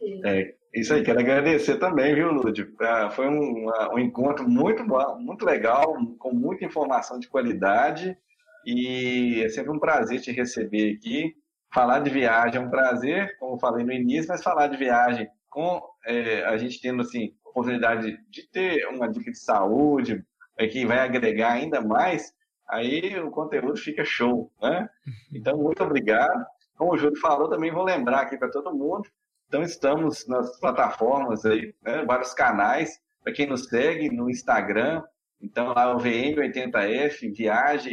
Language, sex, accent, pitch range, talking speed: Portuguese, male, Brazilian, 120-185 Hz, 160 wpm